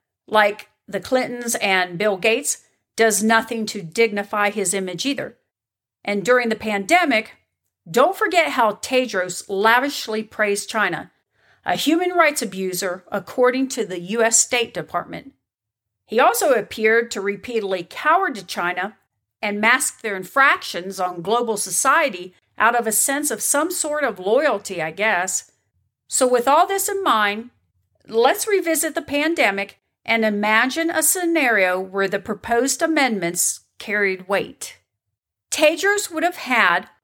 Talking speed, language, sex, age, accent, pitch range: 135 wpm, English, female, 50-69, American, 200-285 Hz